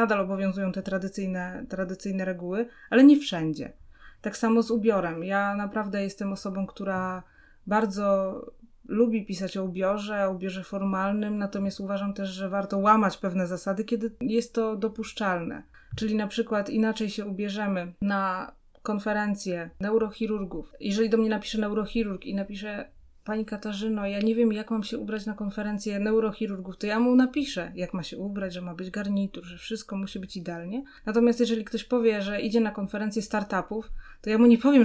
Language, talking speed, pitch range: Polish, 165 wpm, 195-230 Hz